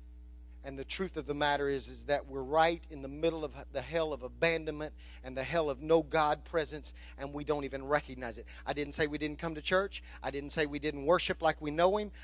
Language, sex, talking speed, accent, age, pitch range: English, male, 245 wpm, American, 40-59, 140-185 Hz